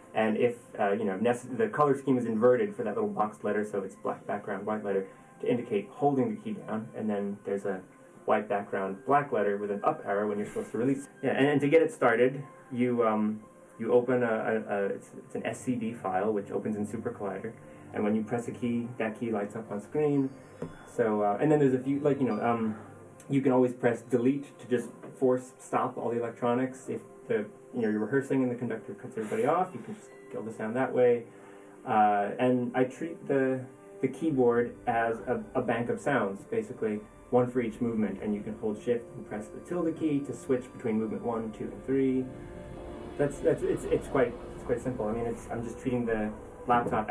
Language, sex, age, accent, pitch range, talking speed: English, male, 20-39, American, 105-130 Hz, 220 wpm